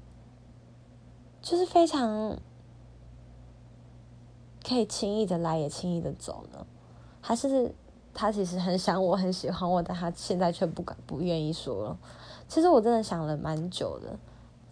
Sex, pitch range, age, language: female, 155-215 Hz, 20-39, Chinese